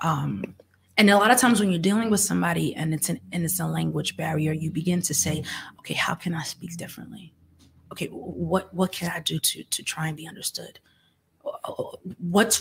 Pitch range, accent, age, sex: 155-190 Hz, American, 30-49, female